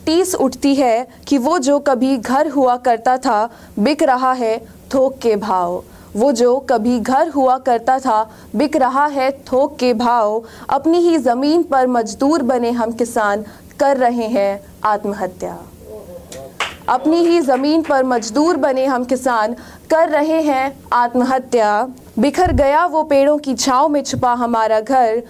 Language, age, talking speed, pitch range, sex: Hindi, 30-49, 155 wpm, 225-285 Hz, female